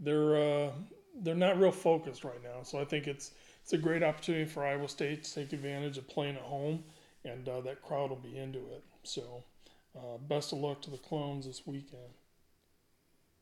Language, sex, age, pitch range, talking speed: English, male, 30-49, 140-160 Hz, 195 wpm